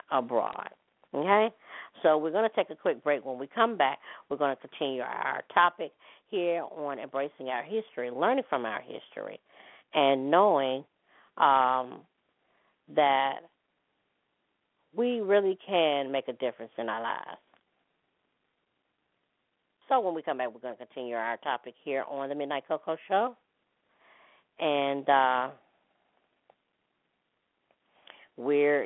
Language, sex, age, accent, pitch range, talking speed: English, female, 40-59, American, 125-160 Hz, 130 wpm